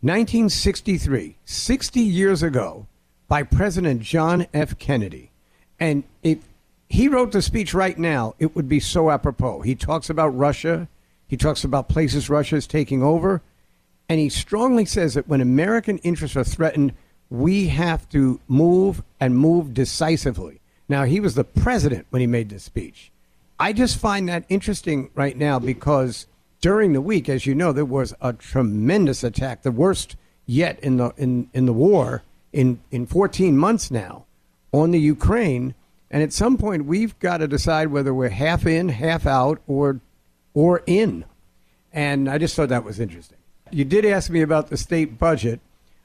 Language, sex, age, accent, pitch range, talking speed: English, male, 50-69, American, 130-175 Hz, 170 wpm